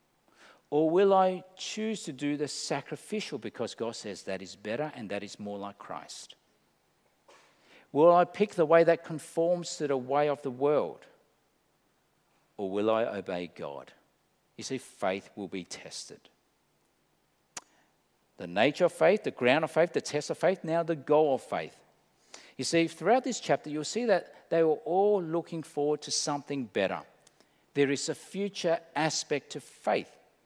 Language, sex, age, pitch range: English, male, 50-69, 140-185 Hz